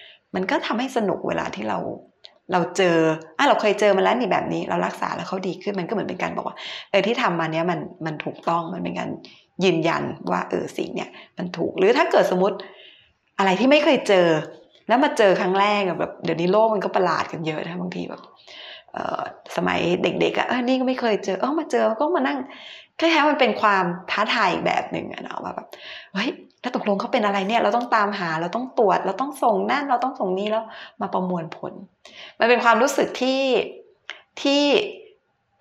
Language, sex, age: Thai, female, 20-39